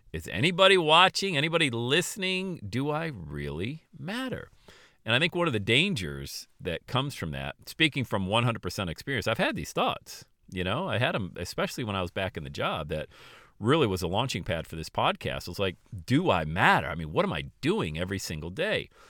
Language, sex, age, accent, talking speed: English, male, 40-59, American, 205 wpm